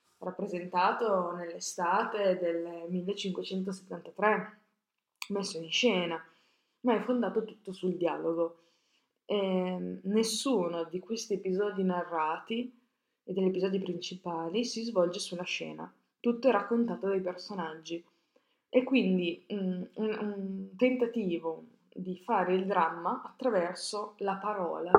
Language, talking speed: Italian, 105 wpm